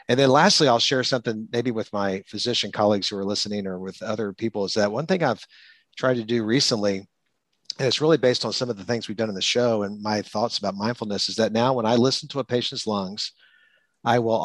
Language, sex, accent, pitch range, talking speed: English, male, American, 100-115 Hz, 240 wpm